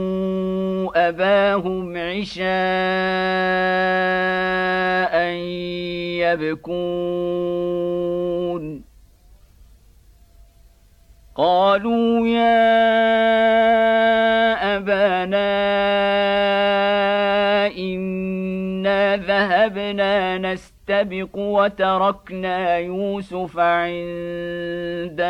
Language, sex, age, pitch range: Indonesian, male, 50-69, 170-200 Hz